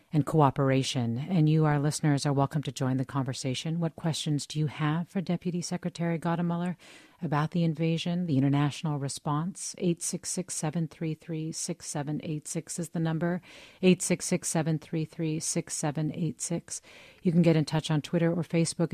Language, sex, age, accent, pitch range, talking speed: English, female, 40-59, American, 145-170 Hz, 130 wpm